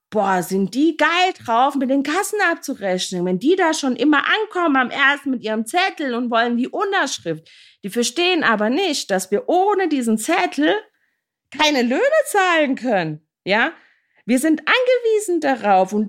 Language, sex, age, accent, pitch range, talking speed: German, female, 40-59, German, 210-320 Hz, 160 wpm